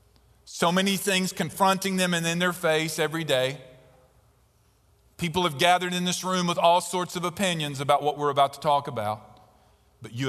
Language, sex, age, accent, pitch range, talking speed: English, male, 40-59, American, 130-195 Hz, 180 wpm